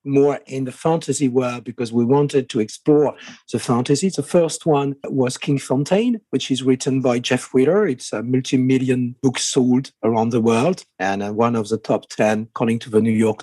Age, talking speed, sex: 50-69, 195 wpm, male